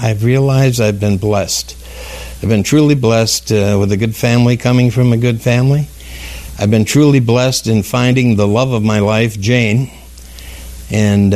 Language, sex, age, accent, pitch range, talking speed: English, male, 60-79, American, 85-125 Hz, 170 wpm